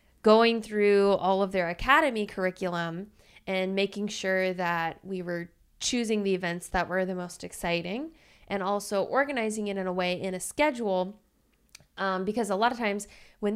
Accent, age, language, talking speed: American, 20-39, English, 170 wpm